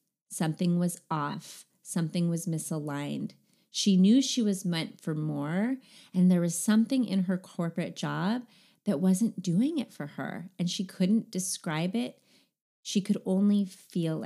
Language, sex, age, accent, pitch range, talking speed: English, female, 30-49, American, 180-230 Hz, 150 wpm